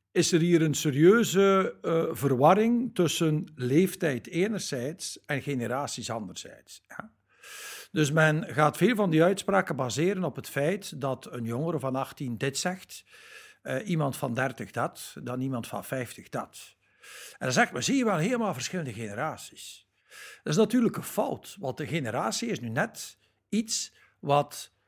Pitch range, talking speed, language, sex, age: 140-215 Hz, 155 wpm, Dutch, male, 60-79